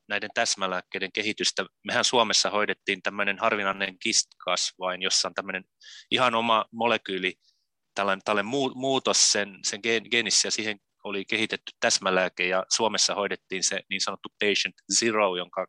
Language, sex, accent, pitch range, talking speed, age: Finnish, male, native, 95-110 Hz, 145 wpm, 20-39